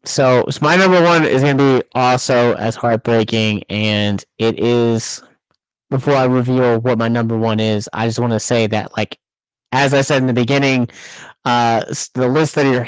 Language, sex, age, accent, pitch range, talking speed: English, male, 30-49, American, 115-135 Hz, 185 wpm